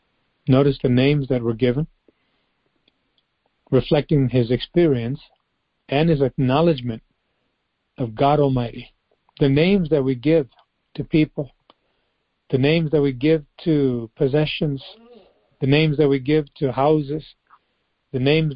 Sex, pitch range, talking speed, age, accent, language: male, 130-155 Hz, 125 wpm, 50-69, American, English